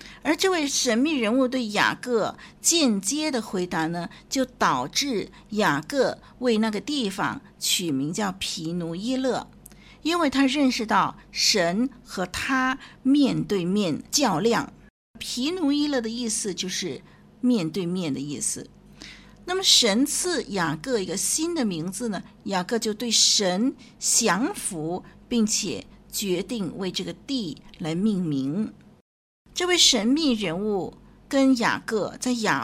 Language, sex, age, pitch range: Chinese, female, 50-69, 195-260 Hz